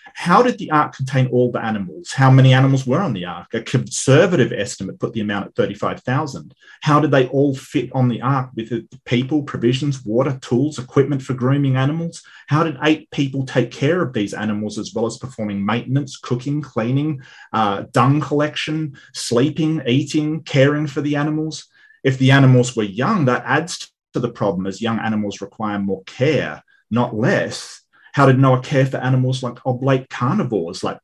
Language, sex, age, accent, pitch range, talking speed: English, male, 30-49, Australian, 115-140 Hz, 180 wpm